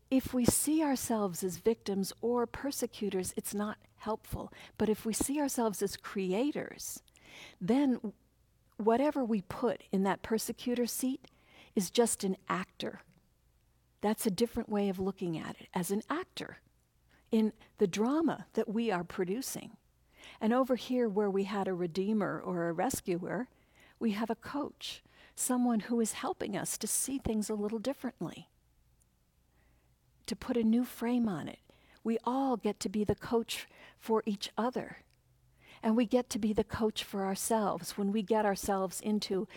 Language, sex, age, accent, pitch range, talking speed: English, female, 50-69, American, 185-235 Hz, 160 wpm